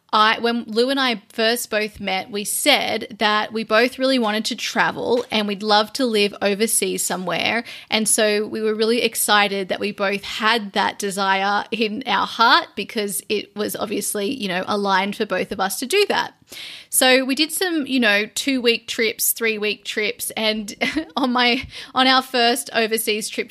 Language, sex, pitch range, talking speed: English, female, 205-245 Hz, 185 wpm